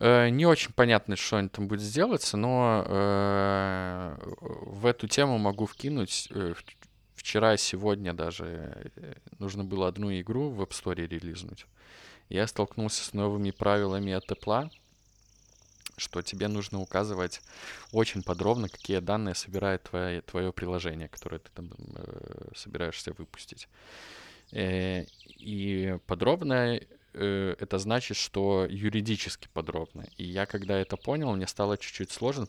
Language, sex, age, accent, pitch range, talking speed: Russian, male, 20-39, native, 90-110 Hz, 130 wpm